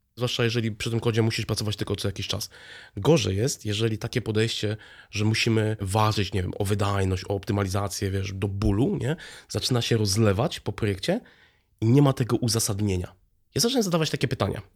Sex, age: male, 30-49